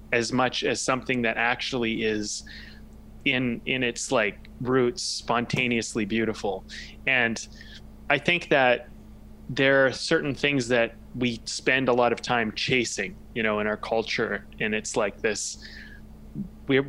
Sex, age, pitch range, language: male, 20-39, 110-135 Hz, English